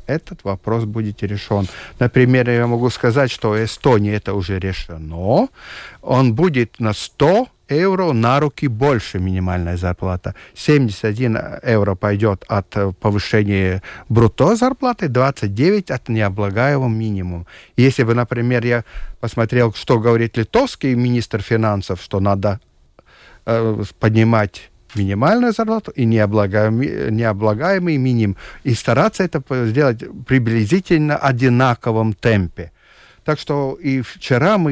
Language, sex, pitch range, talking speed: Russian, male, 105-130 Hz, 115 wpm